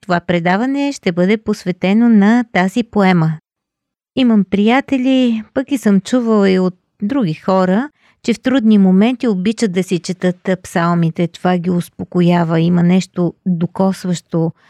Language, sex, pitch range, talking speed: Bulgarian, female, 180-225 Hz, 135 wpm